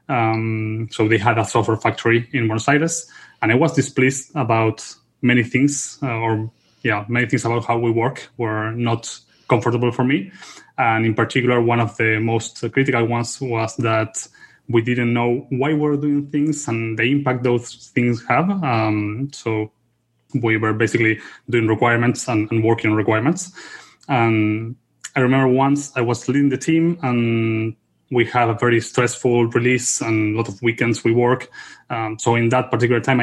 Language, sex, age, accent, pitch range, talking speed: English, male, 20-39, Spanish, 115-125 Hz, 170 wpm